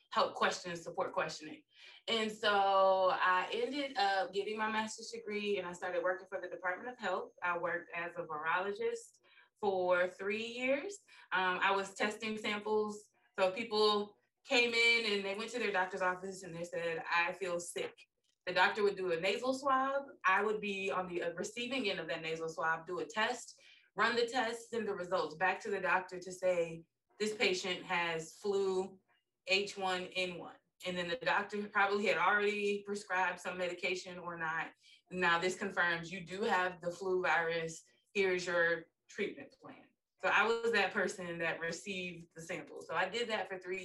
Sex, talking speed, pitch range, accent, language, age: female, 180 wpm, 175-215 Hz, American, English, 20-39